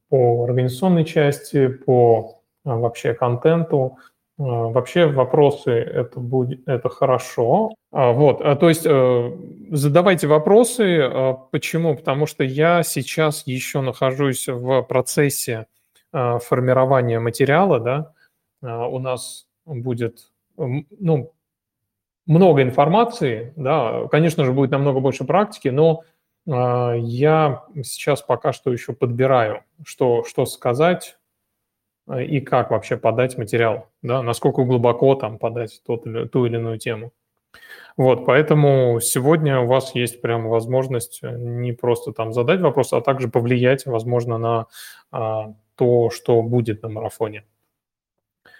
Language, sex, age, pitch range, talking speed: Russian, male, 20-39, 120-145 Hz, 110 wpm